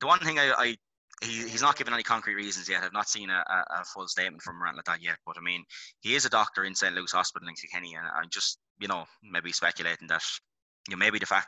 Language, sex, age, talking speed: English, male, 20-39, 250 wpm